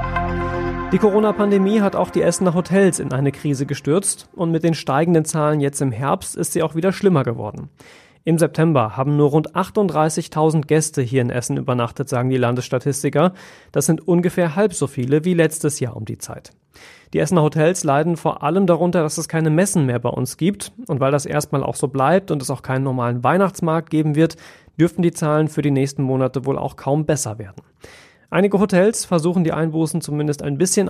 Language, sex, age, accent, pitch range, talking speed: German, male, 30-49, German, 140-175 Hz, 195 wpm